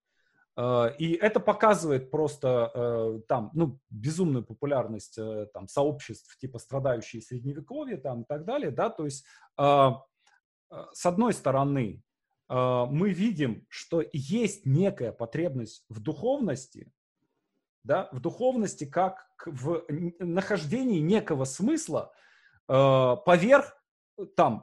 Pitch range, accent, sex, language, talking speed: 125-185 Hz, native, male, Russian, 100 wpm